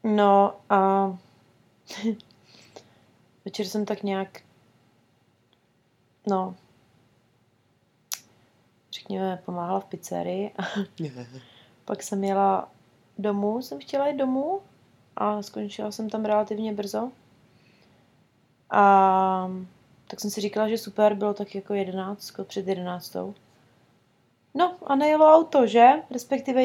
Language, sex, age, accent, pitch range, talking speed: Czech, female, 30-49, native, 190-225 Hz, 100 wpm